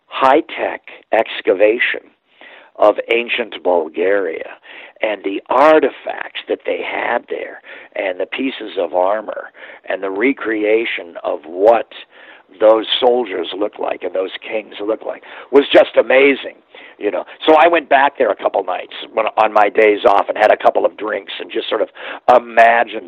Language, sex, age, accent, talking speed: English, male, 50-69, American, 155 wpm